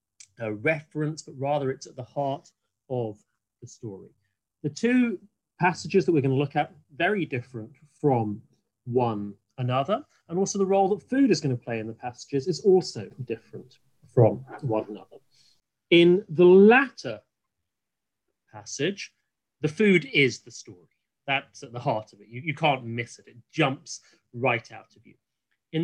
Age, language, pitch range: 30-49, English, 115-160 Hz